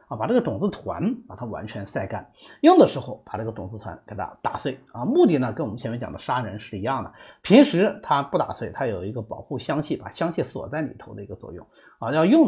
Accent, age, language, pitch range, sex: native, 30-49, Chinese, 110-180 Hz, male